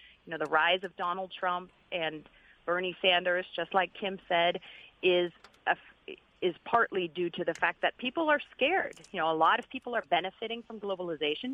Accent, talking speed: American, 185 wpm